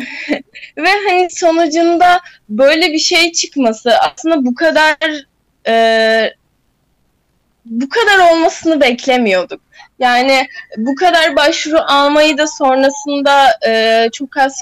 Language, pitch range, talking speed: Turkish, 235-305 Hz, 105 wpm